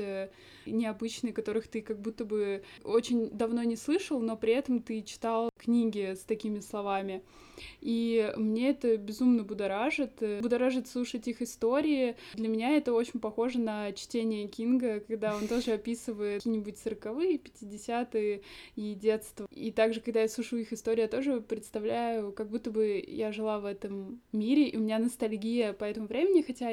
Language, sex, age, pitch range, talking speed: Russian, female, 20-39, 215-245 Hz, 160 wpm